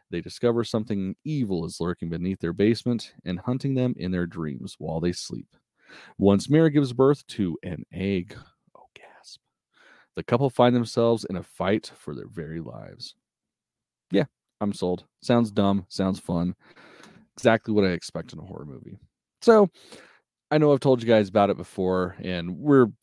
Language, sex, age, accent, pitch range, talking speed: English, male, 30-49, American, 90-120 Hz, 170 wpm